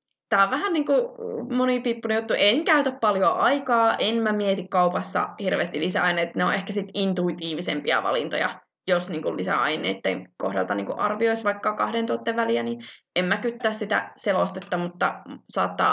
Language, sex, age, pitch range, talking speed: Finnish, female, 20-39, 195-255 Hz, 140 wpm